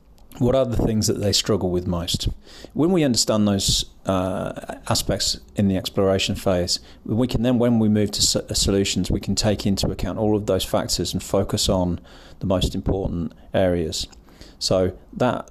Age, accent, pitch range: 30-49, British, 95-115 Hz